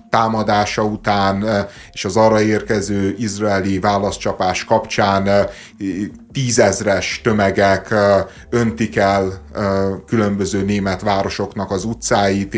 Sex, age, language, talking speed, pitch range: male, 30-49, Hungarian, 85 wpm, 100-115 Hz